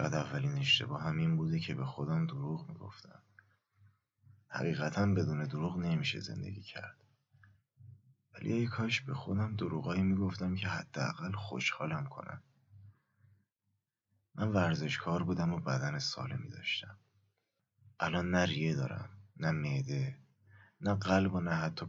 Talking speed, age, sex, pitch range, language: 125 wpm, 30-49, male, 90-135 Hz, Persian